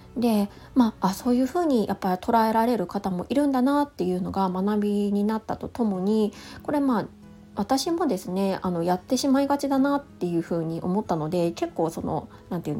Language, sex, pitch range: Japanese, female, 180-250 Hz